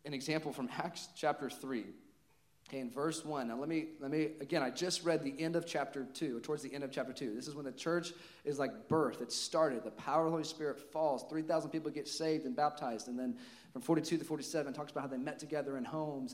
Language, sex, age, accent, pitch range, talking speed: English, male, 40-59, American, 125-160 Hz, 250 wpm